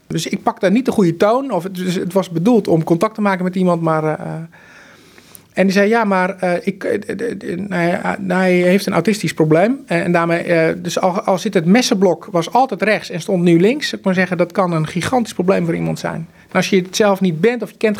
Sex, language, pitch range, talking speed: male, Dutch, 165-195 Hz, 205 wpm